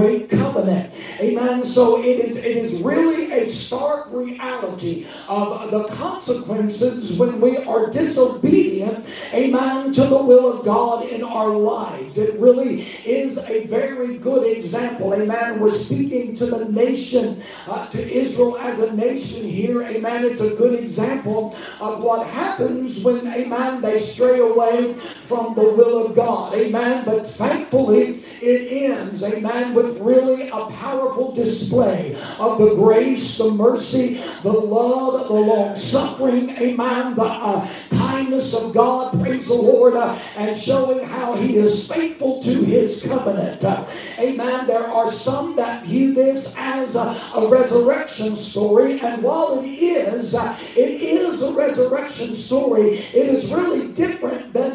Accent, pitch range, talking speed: American, 225-260 Hz, 145 wpm